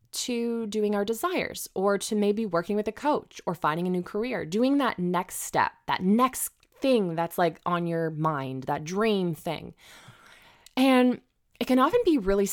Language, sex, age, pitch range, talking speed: English, female, 20-39, 170-215 Hz, 175 wpm